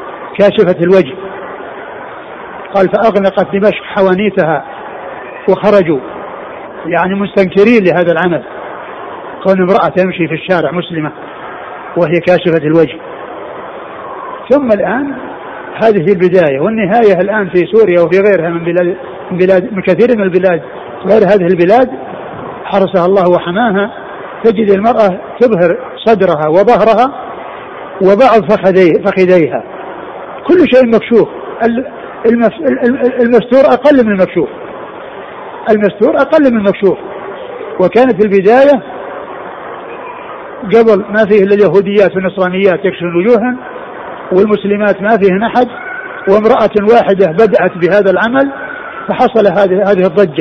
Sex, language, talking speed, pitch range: male, Arabic, 100 wpm, 185-235 Hz